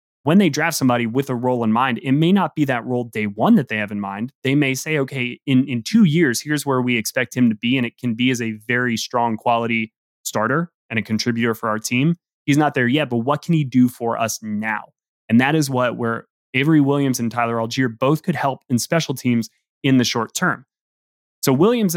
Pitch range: 115-145 Hz